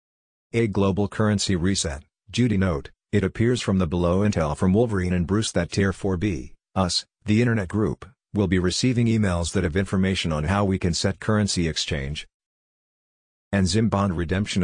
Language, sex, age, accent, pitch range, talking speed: English, male, 50-69, American, 90-105 Hz, 170 wpm